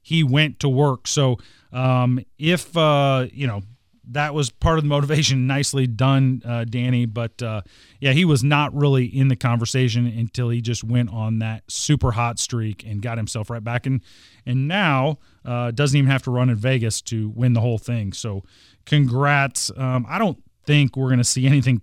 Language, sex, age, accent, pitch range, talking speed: English, male, 30-49, American, 110-140 Hz, 195 wpm